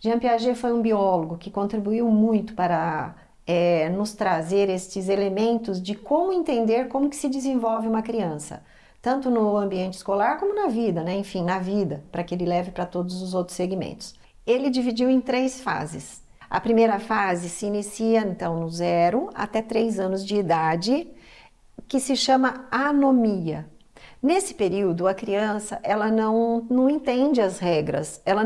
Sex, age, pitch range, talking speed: female, 50-69, 185-245 Hz, 160 wpm